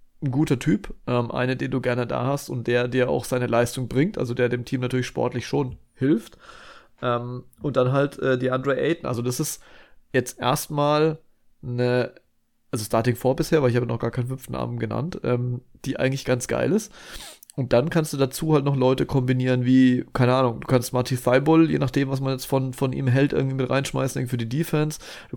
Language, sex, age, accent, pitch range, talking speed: German, male, 30-49, German, 125-145 Hz, 215 wpm